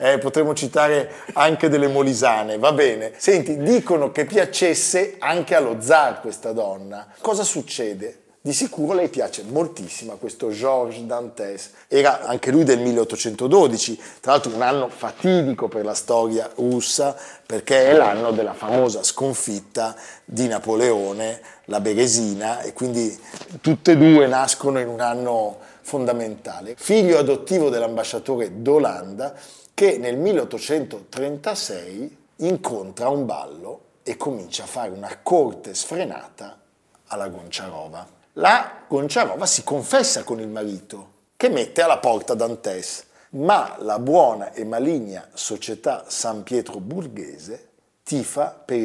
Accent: native